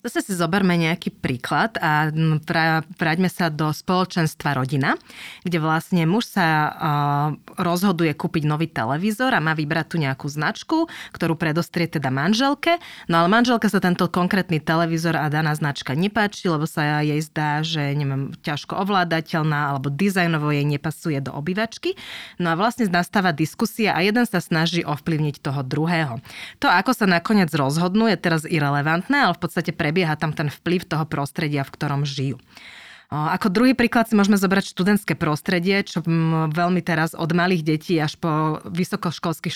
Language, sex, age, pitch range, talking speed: Slovak, female, 20-39, 155-190 Hz, 160 wpm